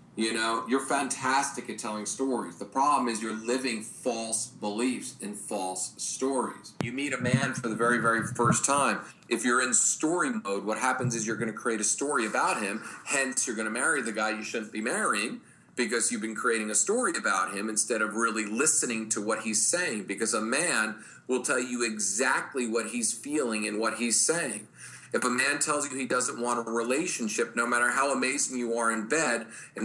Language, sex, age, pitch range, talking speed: English, male, 40-59, 110-130 Hz, 205 wpm